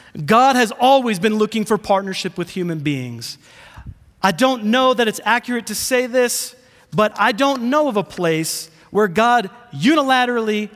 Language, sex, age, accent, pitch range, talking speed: English, male, 30-49, American, 145-215 Hz, 160 wpm